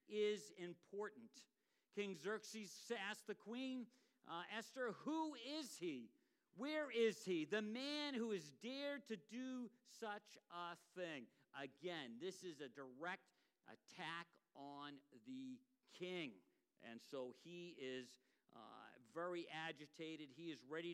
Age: 50-69